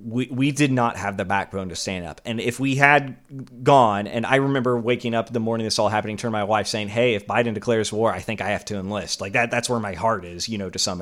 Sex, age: male, 30-49